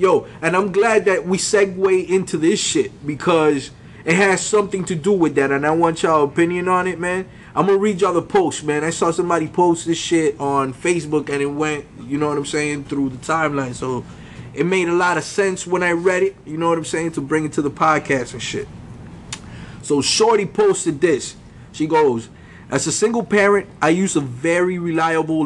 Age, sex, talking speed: 20-39, male, 215 wpm